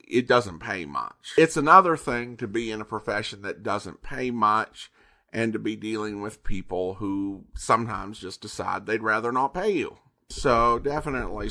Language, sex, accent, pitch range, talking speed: English, male, American, 110-155 Hz, 170 wpm